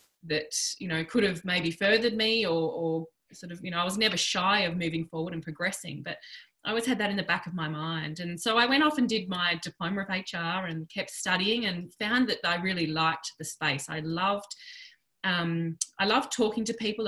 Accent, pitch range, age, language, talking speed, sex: Australian, 170-215 Hz, 20-39, English, 225 wpm, female